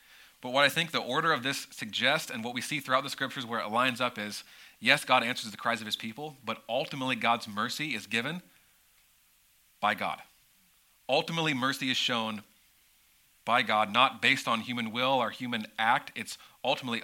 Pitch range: 115-145 Hz